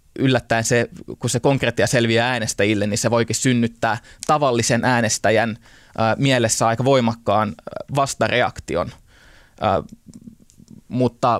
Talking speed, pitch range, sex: 95 wpm, 110-125 Hz, male